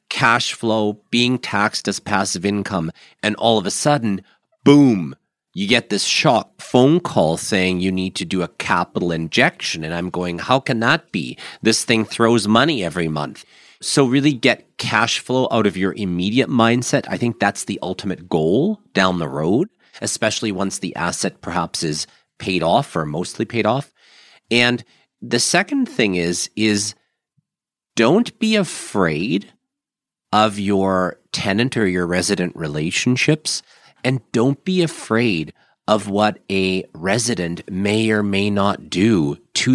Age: 40-59